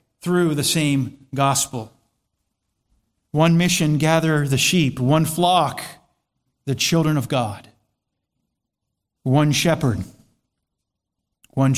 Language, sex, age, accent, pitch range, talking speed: English, male, 50-69, American, 125-165 Hz, 90 wpm